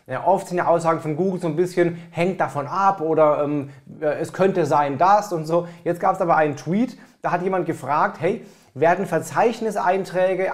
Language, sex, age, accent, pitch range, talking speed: German, male, 30-49, German, 145-175 Hz, 190 wpm